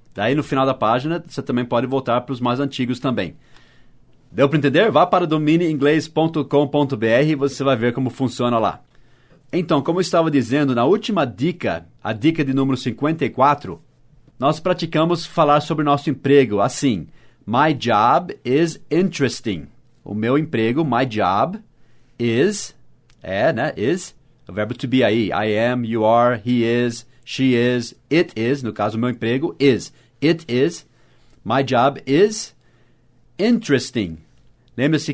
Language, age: English, 30-49